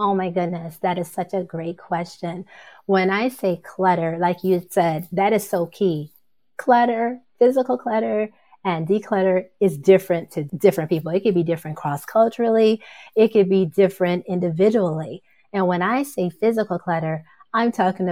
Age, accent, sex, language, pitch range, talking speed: 30-49, American, female, English, 170-200 Hz, 160 wpm